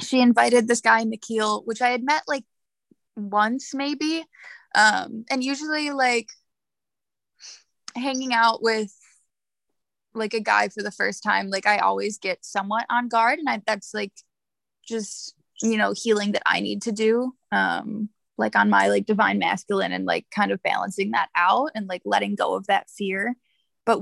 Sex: female